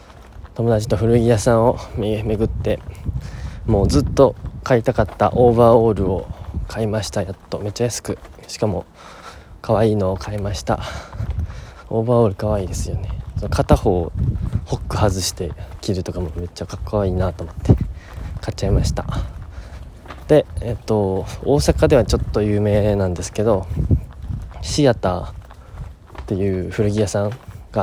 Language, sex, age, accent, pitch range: Japanese, male, 20-39, native, 90-110 Hz